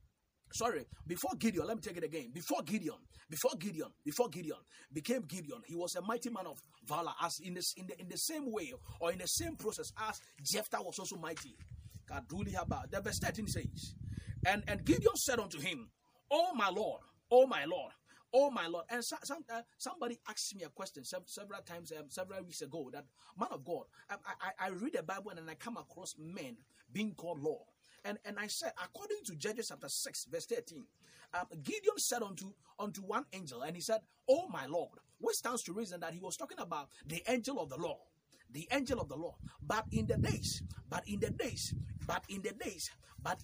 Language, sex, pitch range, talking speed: English, male, 170-240 Hz, 215 wpm